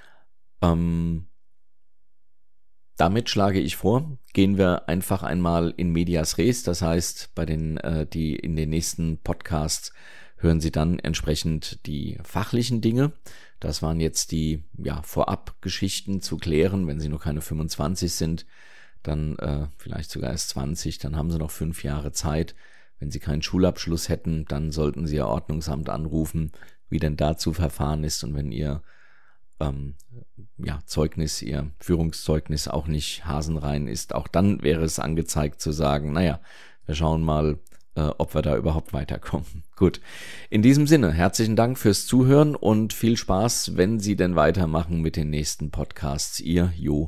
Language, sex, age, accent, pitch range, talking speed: German, male, 40-59, German, 75-90 Hz, 155 wpm